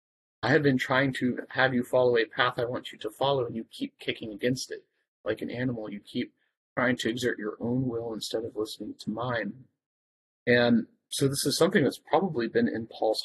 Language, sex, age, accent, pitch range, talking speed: English, male, 30-49, American, 115-130 Hz, 215 wpm